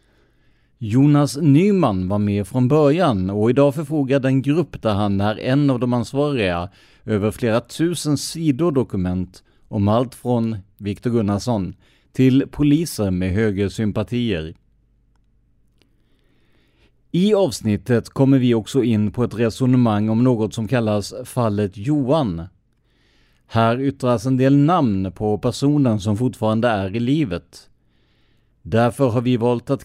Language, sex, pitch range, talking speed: Swedish, male, 105-135 Hz, 130 wpm